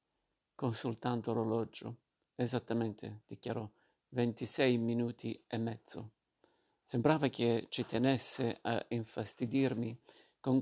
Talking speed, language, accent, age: 85 wpm, Italian, native, 50-69